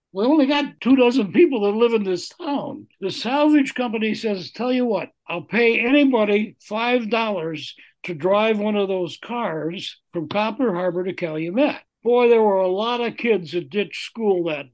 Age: 60-79